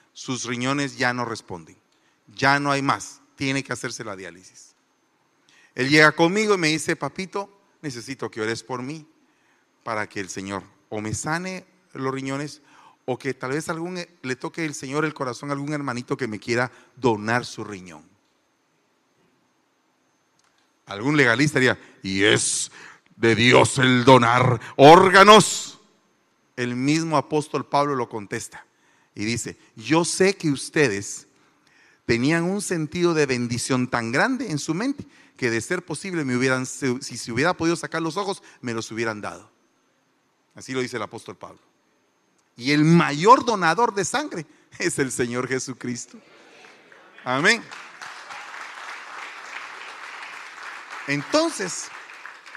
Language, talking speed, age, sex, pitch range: Spanish, 140 wpm, 40-59, male, 120-155 Hz